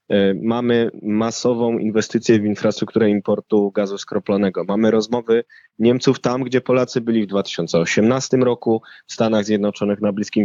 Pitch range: 100-125 Hz